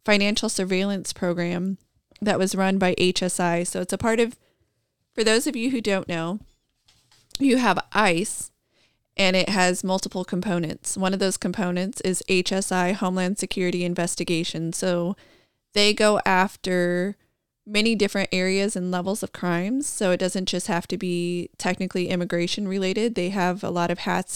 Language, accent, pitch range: English, American, 180-205 Hz